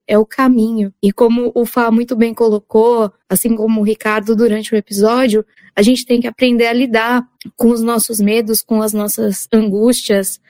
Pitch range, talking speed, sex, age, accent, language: 220-255 Hz, 185 wpm, female, 20-39, Brazilian, Portuguese